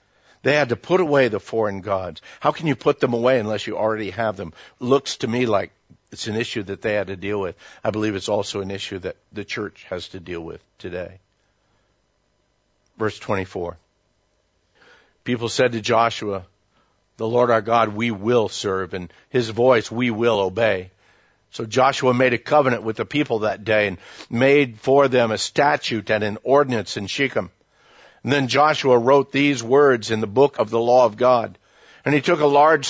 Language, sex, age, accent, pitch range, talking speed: English, male, 60-79, American, 110-140 Hz, 190 wpm